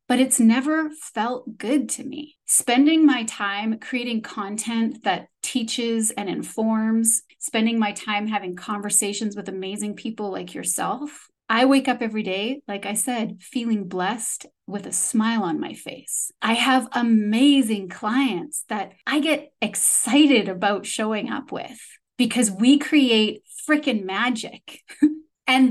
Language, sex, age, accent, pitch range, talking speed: English, female, 30-49, American, 215-265 Hz, 140 wpm